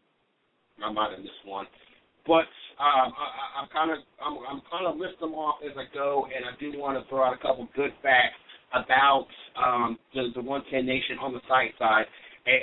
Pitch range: 125-145 Hz